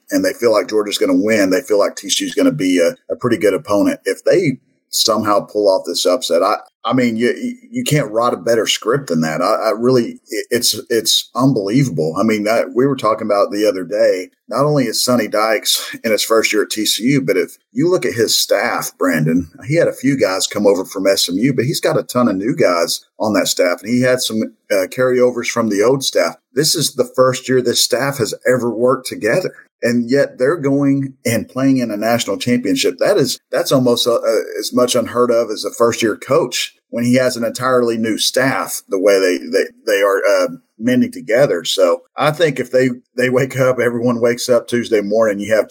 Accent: American